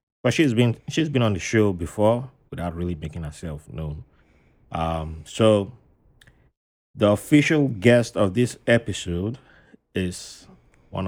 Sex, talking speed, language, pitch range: male, 130 wpm, English, 90-115 Hz